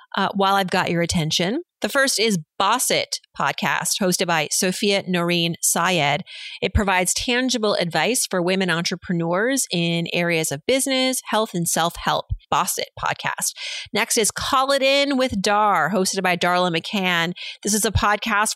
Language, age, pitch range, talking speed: English, 30-49, 175-220 Hz, 160 wpm